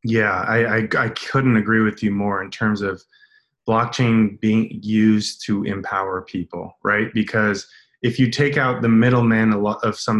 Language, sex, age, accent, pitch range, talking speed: English, male, 20-39, American, 105-120 Hz, 165 wpm